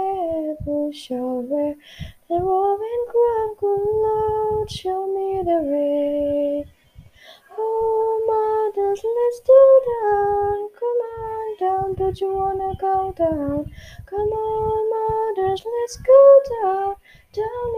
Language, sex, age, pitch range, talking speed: Indonesian, female, 10-29, 325-435 Hz, 105 wpm